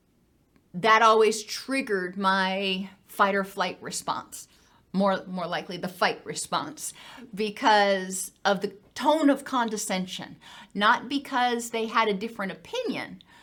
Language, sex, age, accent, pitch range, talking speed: English, female, 40-59, American, 195-245 Hz, 120 wpm